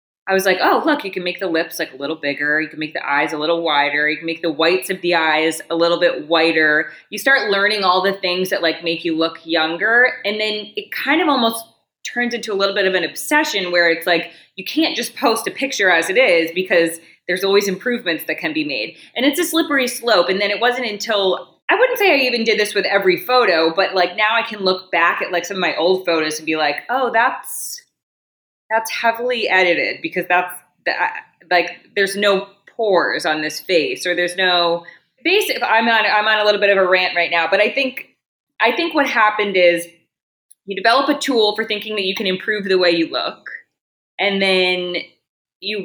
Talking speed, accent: 225 wpm, American